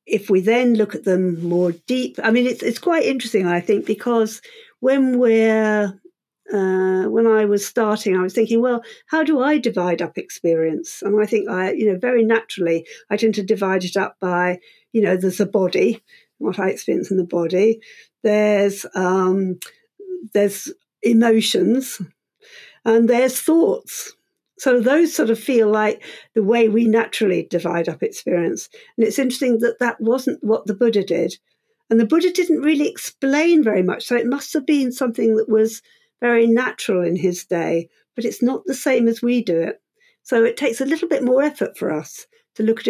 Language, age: English, 60-79